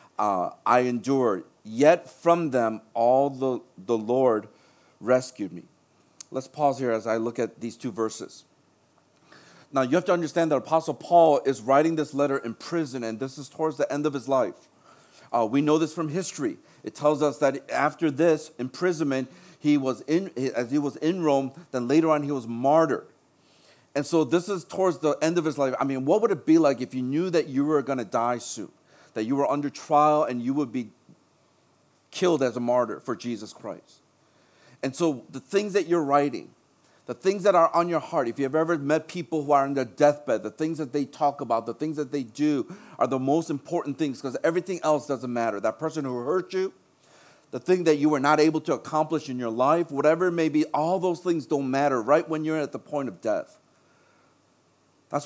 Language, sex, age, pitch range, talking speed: English, male, 40-59, 130-160 Hz, 215 wpm